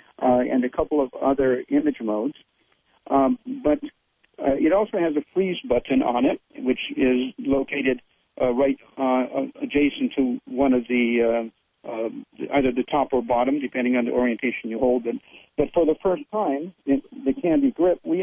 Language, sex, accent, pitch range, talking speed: English, male, American, 130-185 Hz, 180 wpm